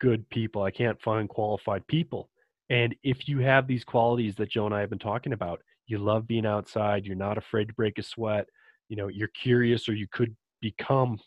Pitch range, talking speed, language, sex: 115-155 Hz, 215 wpm, English, male